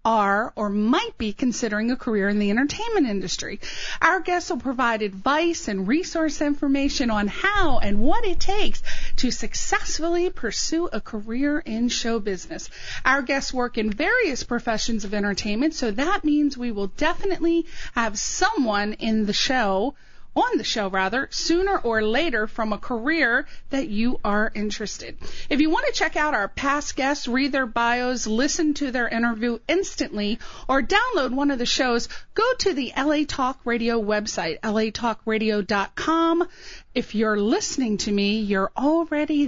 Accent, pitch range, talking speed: American, 220-320 Hz, 160 wpm